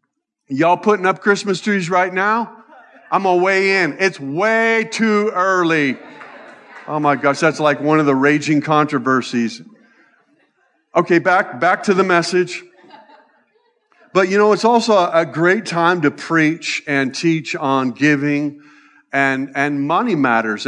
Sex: male